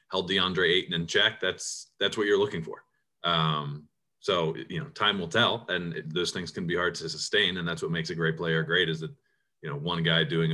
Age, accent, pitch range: 30-49, American, 80-100 Hz